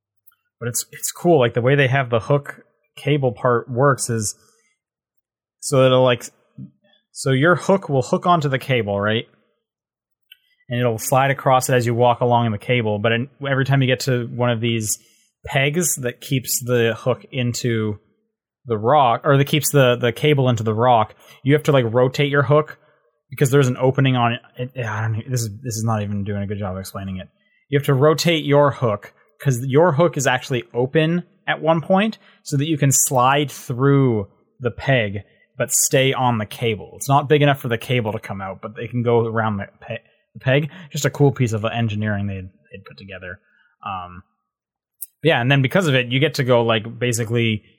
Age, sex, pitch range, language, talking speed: 20-39, male, 110-140 Hz, English, 205 wpm